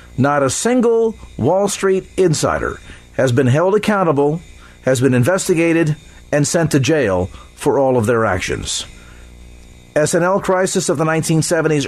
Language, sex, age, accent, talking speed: English, male, 50-69, American, 135 wpm